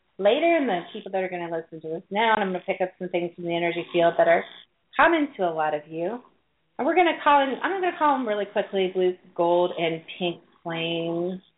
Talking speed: 260 wpm